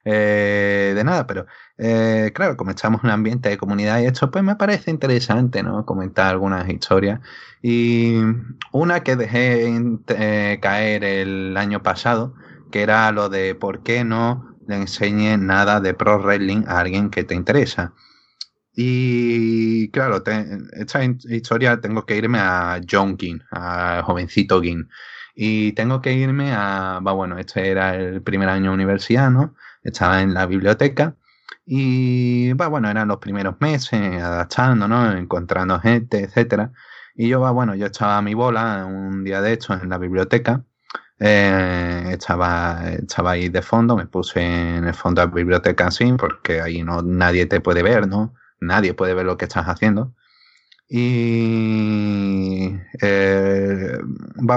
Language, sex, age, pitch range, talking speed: Spanish, male, 30-49, 95-120 Hz, 155 wpm